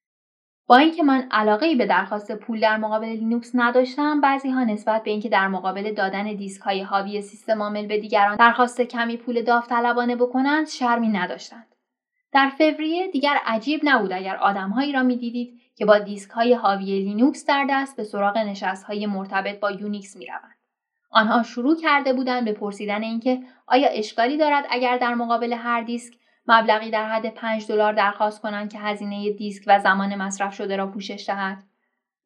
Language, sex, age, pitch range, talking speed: Persian, female, 10-29, 205-260 Hz, 165 wpm